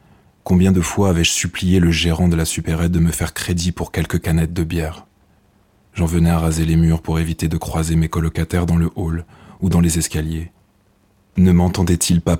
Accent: French